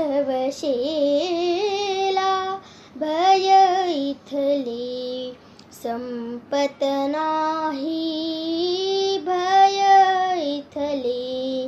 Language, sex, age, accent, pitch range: Marathi, female, 20-39, native, 290-390 Hz